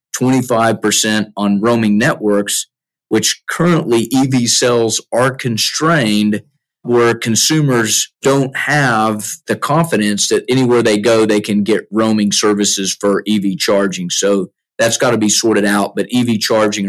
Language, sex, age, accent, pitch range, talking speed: English, male, 40-59, American, 100-115 Hz, 135 wpm